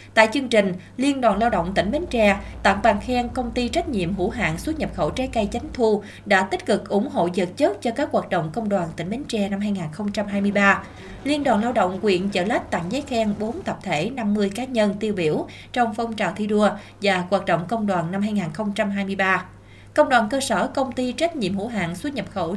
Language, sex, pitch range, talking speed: Vietnamese, female, 195-245 Hz, 230 wpm